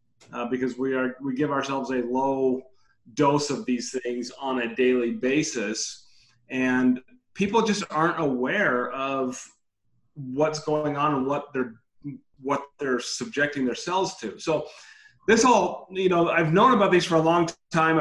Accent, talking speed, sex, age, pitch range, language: American, 160 wpm, male, 30-49, 130-155 Hz, English